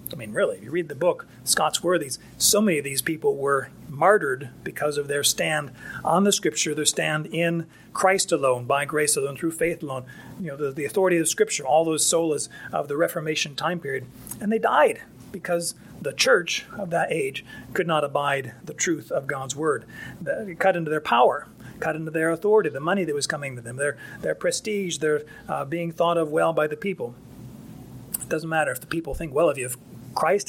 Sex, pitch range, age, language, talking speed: male, 150-205 Hz, 40-59, English, 210 wpm